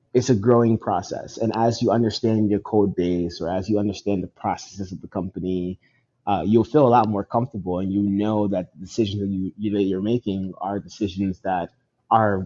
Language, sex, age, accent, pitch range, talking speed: English, male, 20-39, American, 95-110 Hz, 200 wpm